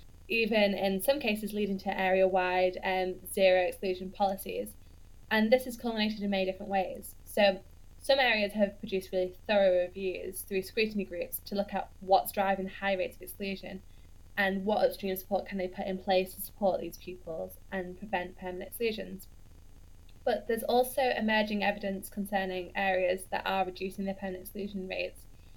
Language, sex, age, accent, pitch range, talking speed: English, female, 10-29, British, 185-210 Hz, 165 wpm